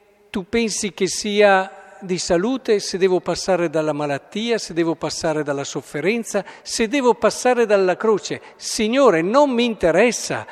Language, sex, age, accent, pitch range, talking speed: Italian, male, 50-69, native, 160-215 Hz, 145 wpm